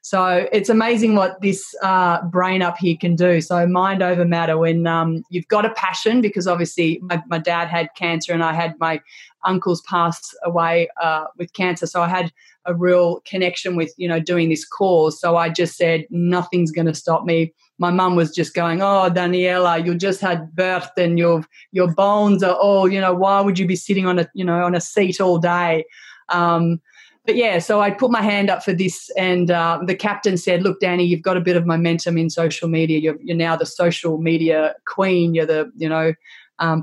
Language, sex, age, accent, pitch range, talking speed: English, female, 20-39, Australian, 165-190 Hz, 215 wpm